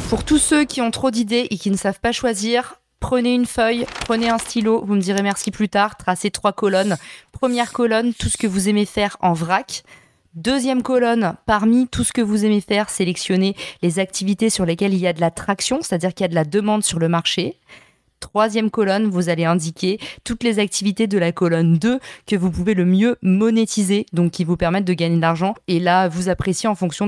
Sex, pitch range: female, 180-220 Hz